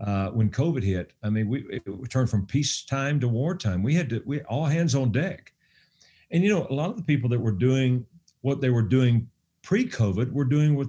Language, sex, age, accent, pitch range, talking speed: English, male, 50-69, American, 115-150 Hz, 220 wpm